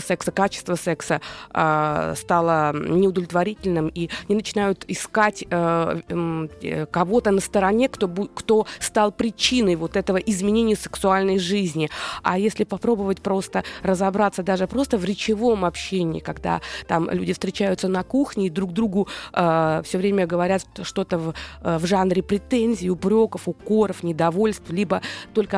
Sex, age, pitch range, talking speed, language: female, 20-39, 180-210 Hz, 135 wpm, Russian